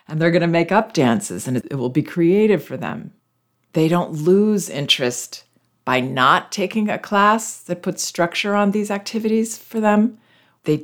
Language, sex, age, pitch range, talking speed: English, female, 40-59, 135-180 Hz, 175 wpm